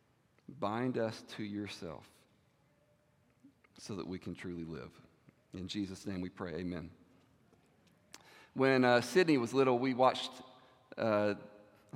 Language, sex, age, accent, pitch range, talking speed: English, male, 40-59, American, 105-140 Hz, 120 wpm